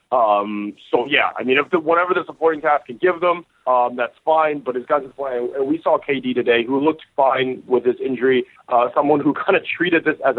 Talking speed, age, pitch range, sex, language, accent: 235 wpm, 30-49, 125-165 Hz, male, English, American